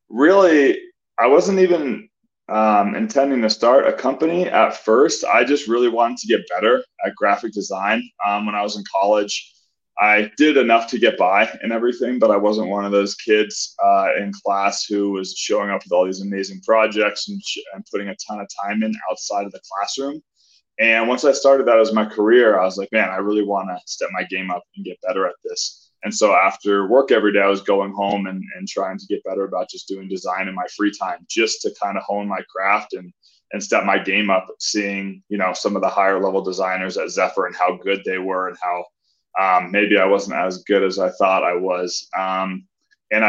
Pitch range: 95-115 Hz